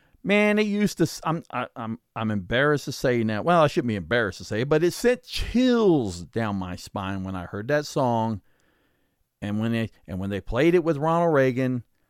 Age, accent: 40-59, American